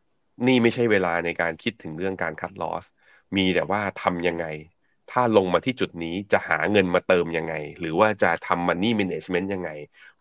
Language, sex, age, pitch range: Thai, male, 30-49, 85-105 Hz